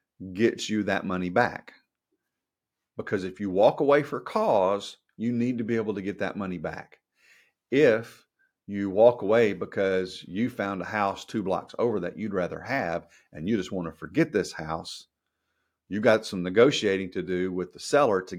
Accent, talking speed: American, 185 wpm